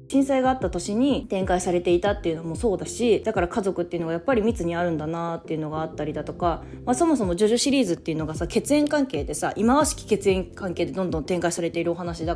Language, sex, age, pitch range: Japanese, female, 20-39, 165-235 Hz